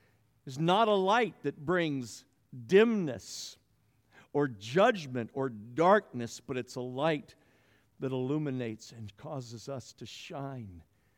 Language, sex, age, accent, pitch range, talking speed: English, male, 50-69, American, 105-135 Hz, 120 wpm